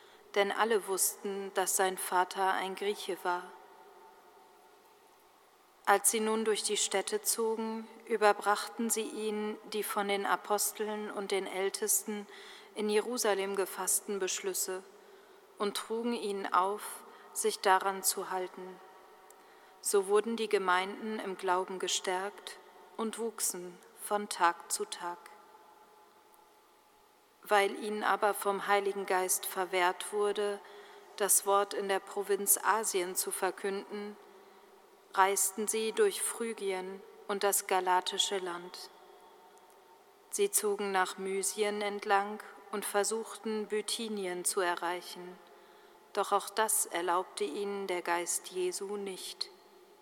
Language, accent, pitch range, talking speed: German, German, 195-230 Hz, 115 wpm